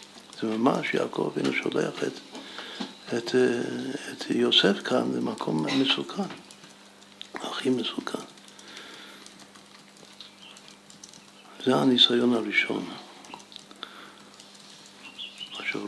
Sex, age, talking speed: male, 60-79, 70 wpm